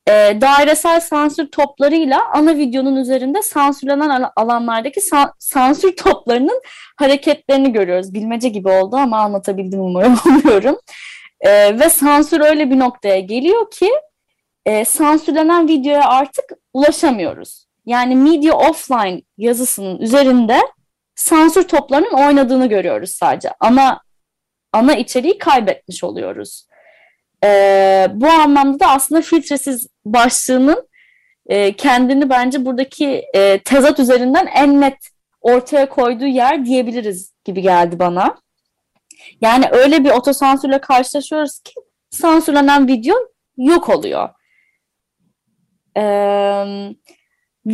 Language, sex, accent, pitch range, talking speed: Turkish, female, native, 220-295 Hz, 105 wpm